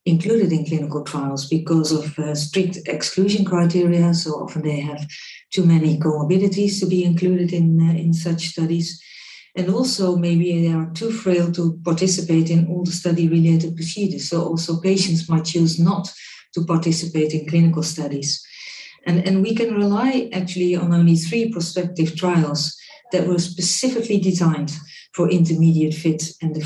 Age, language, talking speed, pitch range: 50-69, English, 160 wpm, 160-180 Hz